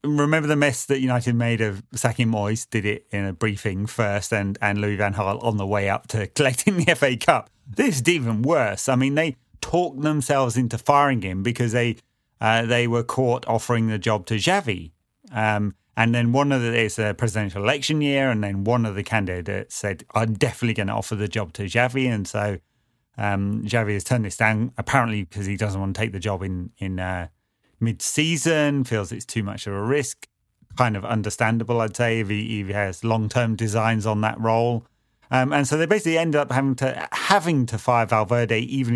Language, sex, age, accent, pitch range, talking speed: English, male, 30-49, British, 105-125 Hz, 210 wpm